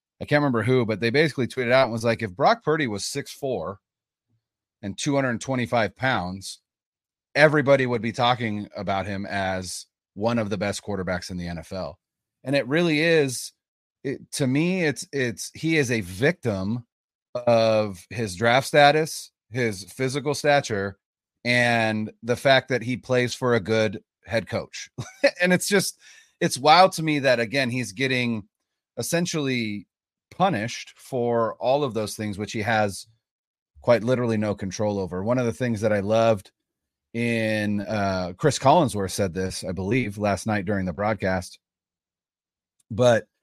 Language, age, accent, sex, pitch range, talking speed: English, 30-49, American, male, 100-130 Hz, 165 wpm